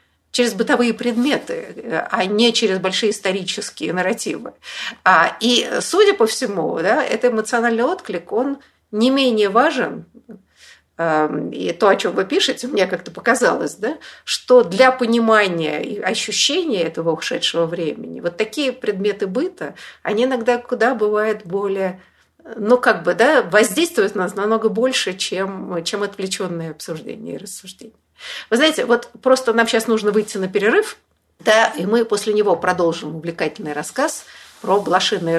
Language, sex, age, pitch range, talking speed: Russian, female, 50-69, 185-245 Hz, 140 wpm